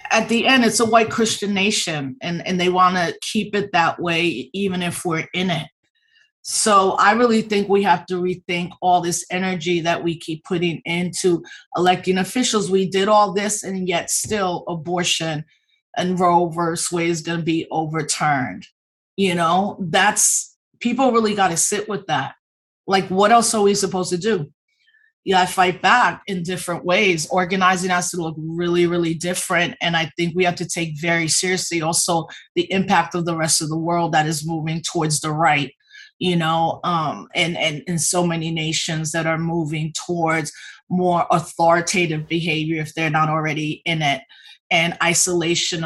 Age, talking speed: 30-49, 180 wpm